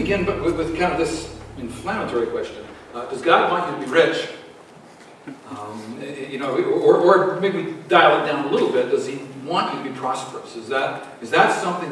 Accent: American